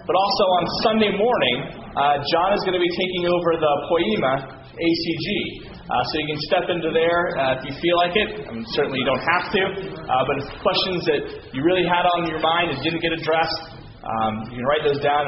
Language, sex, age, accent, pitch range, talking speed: English, male, 30-49, American, 140-185 Hz, 230 wpm